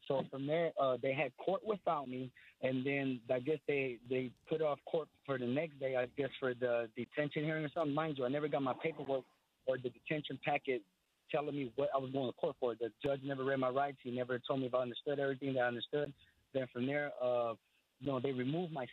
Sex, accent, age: male, American, 20-39